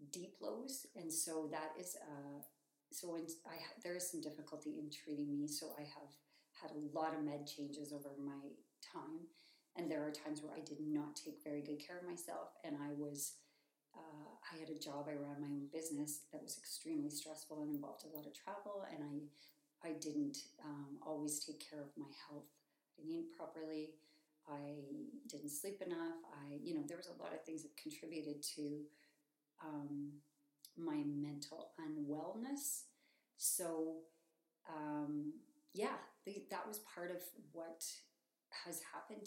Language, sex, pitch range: English, female, 150-215 Hz